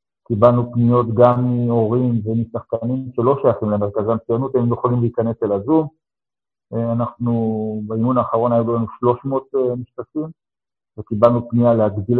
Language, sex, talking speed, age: Hebrew, male, 125 wpm, 50-69